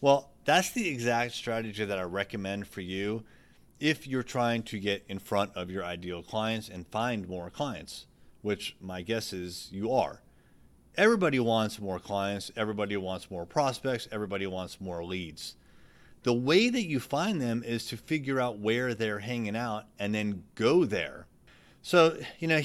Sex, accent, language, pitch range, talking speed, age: male, American, English, 95-120 Hz, 170 wpm, 30-49